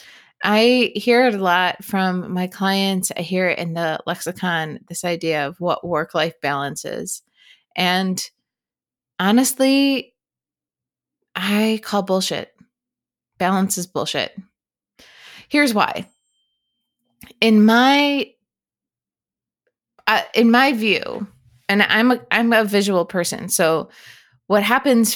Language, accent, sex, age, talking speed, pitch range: English, American, female, 20-39, 110 wpm, 175-220 Hz